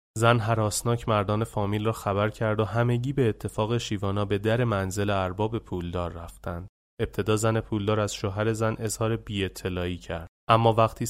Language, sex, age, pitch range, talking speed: Persian, male, 30-49, 95-120 Hz, 155 wpm